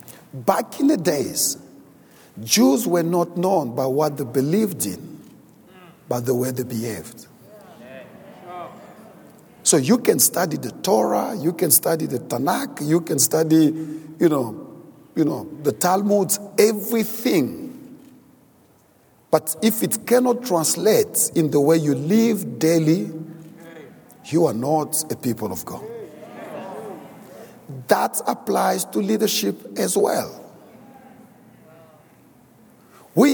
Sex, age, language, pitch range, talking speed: male, 50-69, English, 130-190 Hz, 115 wpm